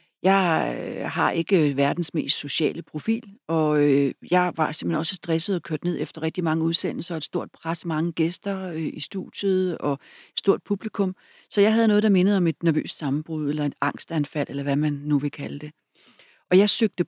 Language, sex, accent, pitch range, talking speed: Danish, female, native, 150-185 Hz, 190 wpm